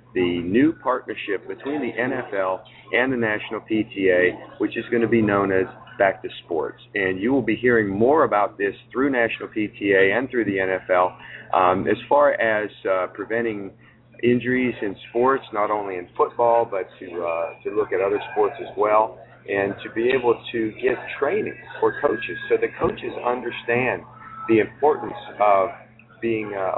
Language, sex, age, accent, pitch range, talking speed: English, male, 40-59, American, 100-130 Hz, 170 wpm